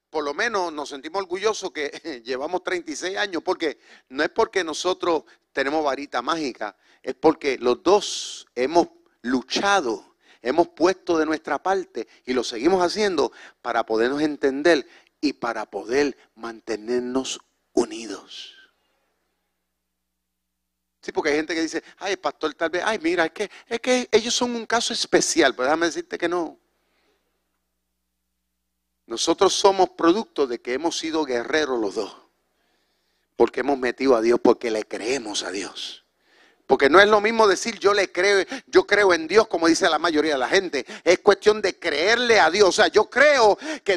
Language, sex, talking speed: Spanish, male, 160 wpm